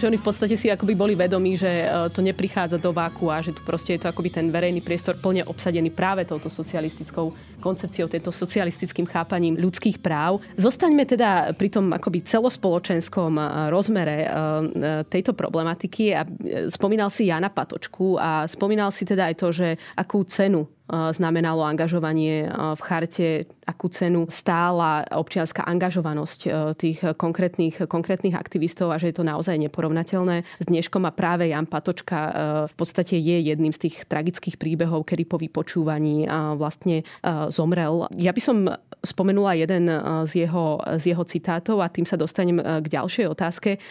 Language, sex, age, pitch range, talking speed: Slovak, female, 20-39, 165-190 Hz, 150 wpm